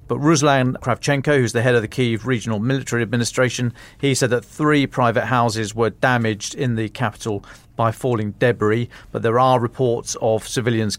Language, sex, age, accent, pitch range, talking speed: English, male, 40-59, British, 110-130 Hz, 175 wpm